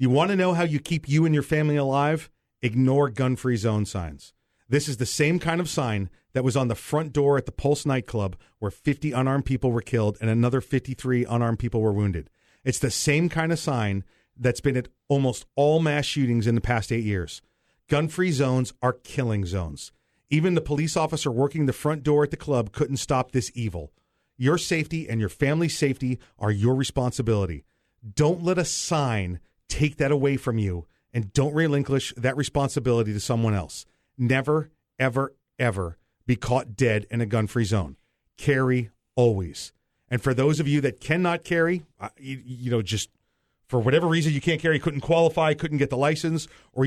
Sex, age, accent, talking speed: male, 40-59, American, 190 wpm